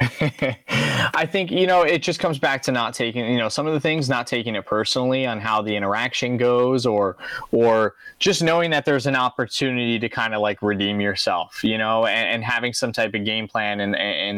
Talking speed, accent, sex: 225 wpm, American, male